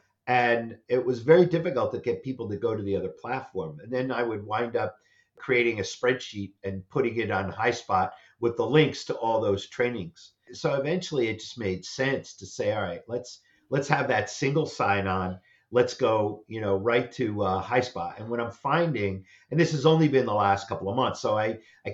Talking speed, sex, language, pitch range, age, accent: 210 wpm, male, English, 100-130 Hz, 50-69, American